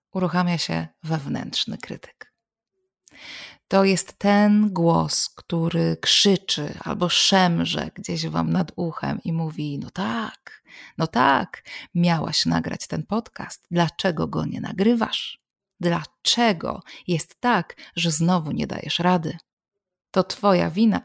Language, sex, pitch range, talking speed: Polish, female, 165-190 Hz, 115 wpm